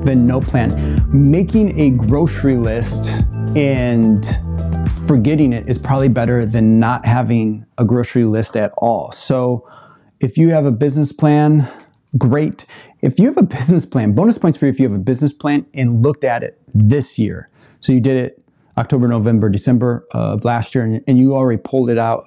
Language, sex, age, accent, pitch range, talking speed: English, male, 30-49, American, 115-145 Hz, 180 wpm